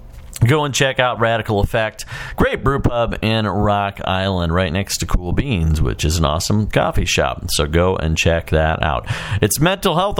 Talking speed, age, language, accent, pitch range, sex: 190 wpm, 40-59, English, American, 95-125 Hz, male